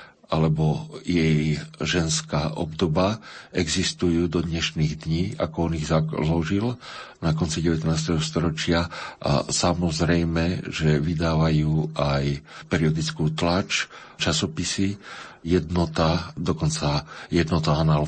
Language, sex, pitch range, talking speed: Slovak, male, 80-95 Hz, 95 wpm